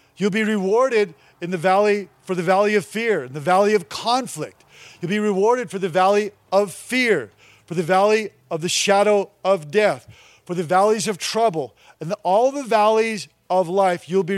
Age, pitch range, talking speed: 40-59, 170-205 Hz, 190 wpm